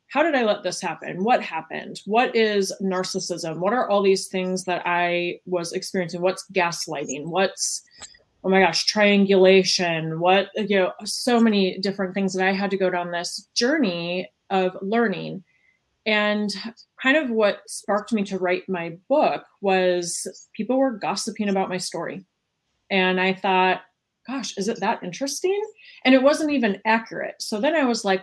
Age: 20-39